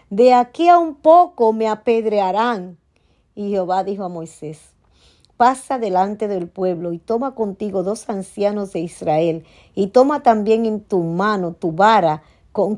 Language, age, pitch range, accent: Spanish, 50-69, 165-220 Hz, American